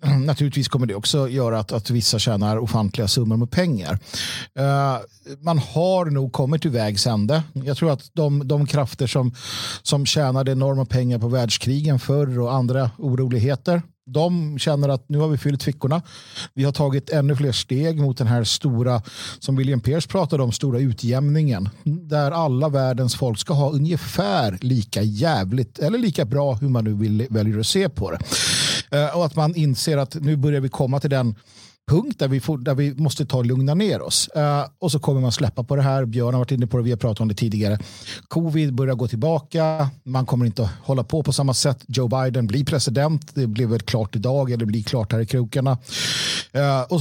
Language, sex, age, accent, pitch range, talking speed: Swedish, male, 50-69, native, 120-150 Hz, 200 wpm